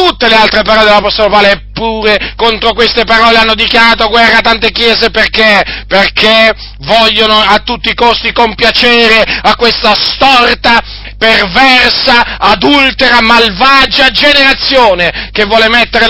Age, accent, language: 40-59, native, Italian